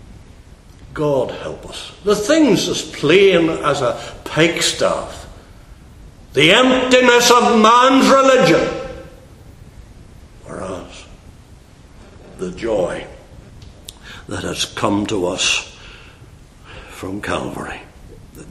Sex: male